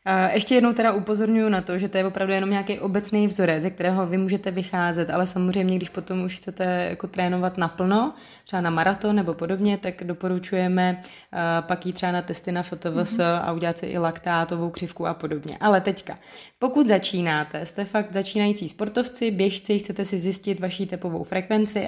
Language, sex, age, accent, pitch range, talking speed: Czech, female, 20-39, native, 180-210 Hz, 180 wpm